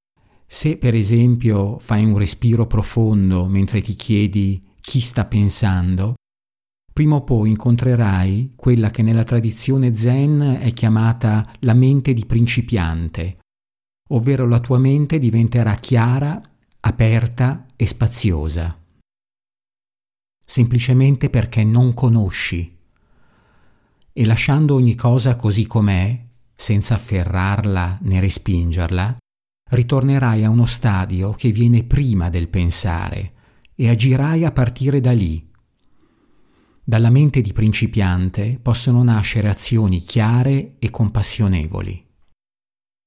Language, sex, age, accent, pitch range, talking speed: Italian, male, 50-69, native, 95-120 Hz, 105 wpm